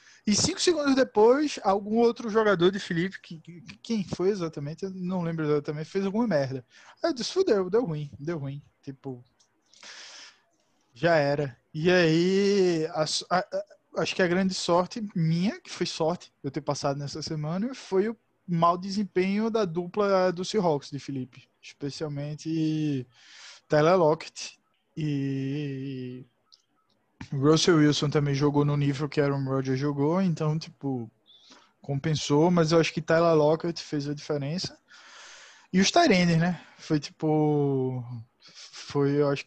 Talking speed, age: 145 wpm, 20-39